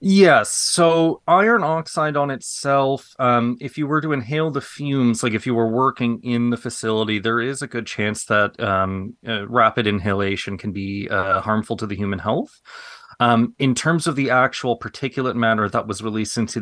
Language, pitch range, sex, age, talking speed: English, 110-135 Hz, male, 30-49, 190 wpm